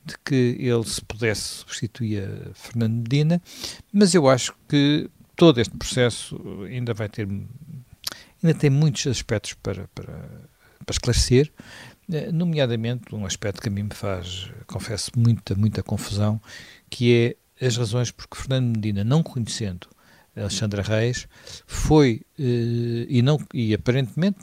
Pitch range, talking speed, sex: 105-135 Hz, 135 wpm, male